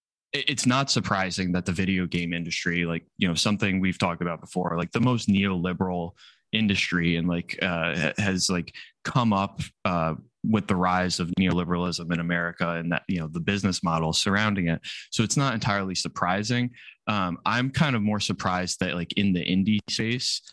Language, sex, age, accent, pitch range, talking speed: English, male, 20-39, American, 90-105 Hz, 180 wpm